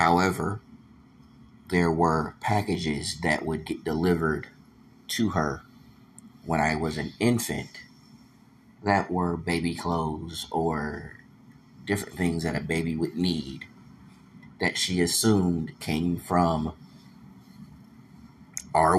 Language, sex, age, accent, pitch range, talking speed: English, male, 30-49, American, 80-90 Hz, 105 wpm